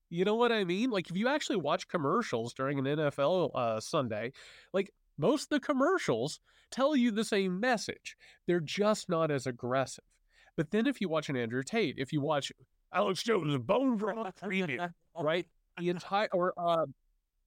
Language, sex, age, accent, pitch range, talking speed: English, male, 30-49, American, 140-205 Hz, 175 wpm